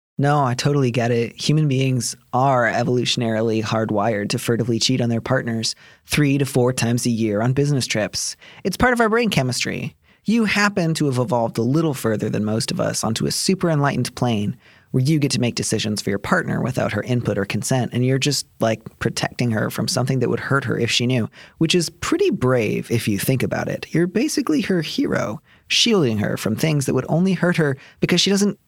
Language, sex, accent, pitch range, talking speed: English, male, American, 110-145 Hz, 215 wpm